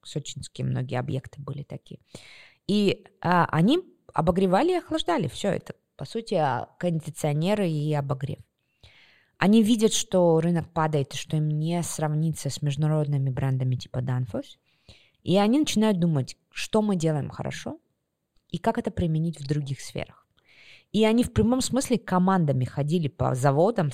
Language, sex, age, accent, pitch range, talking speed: Russian, female, 20-39, native, 135-180 Hz, 140 wpm